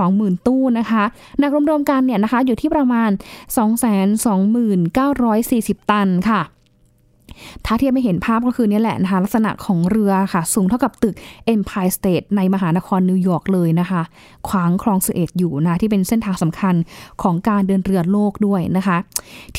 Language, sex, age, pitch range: Thai, female, 10-29, 195-265 Hz